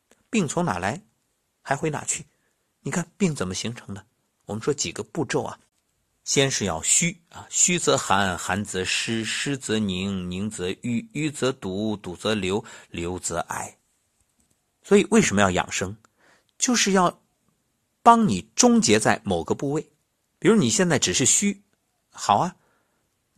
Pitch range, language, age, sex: 105-170 Hz, Chinese, 50-69, male